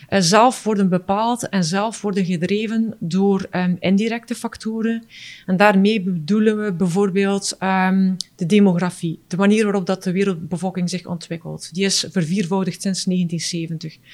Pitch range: 180-210 Hz